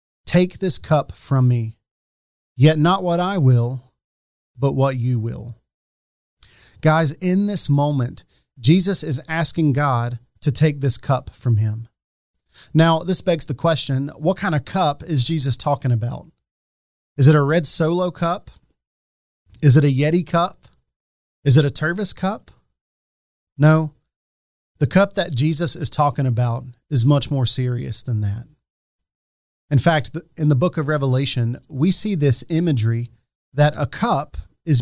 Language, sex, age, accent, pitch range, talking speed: English, male, 30-49, American, 120-155 Hz, 150 wpm